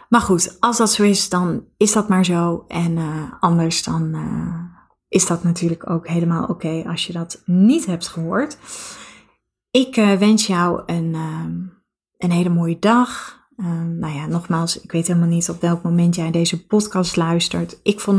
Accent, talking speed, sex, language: Dutch, 185 wpm, female, Dutch